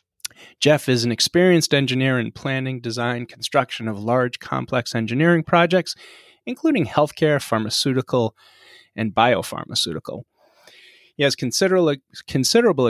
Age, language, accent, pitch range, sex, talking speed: 30-49, English, American, 120-155 Hz, male, 100 wpm